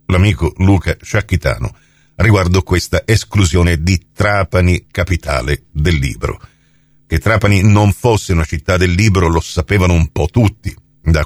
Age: 50-69